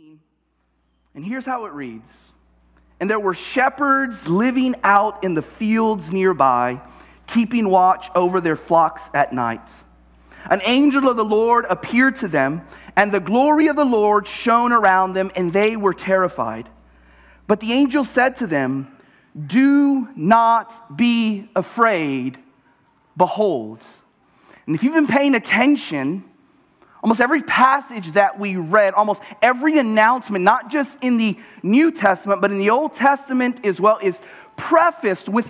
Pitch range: 185-265 Hz